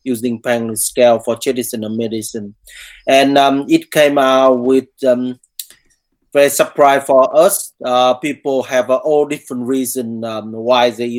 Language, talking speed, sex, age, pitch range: English, 145 wpm, male, 20-39, 120-145 Hz